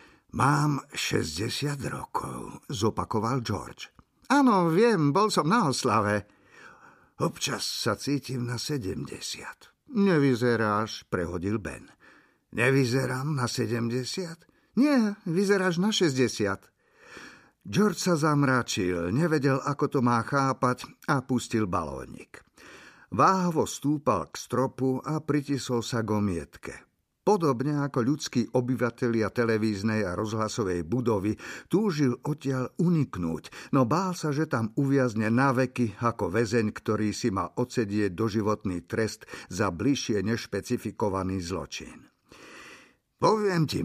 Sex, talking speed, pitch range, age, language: male, 105 wpm, 110-150 Hz, 50-69, Slovak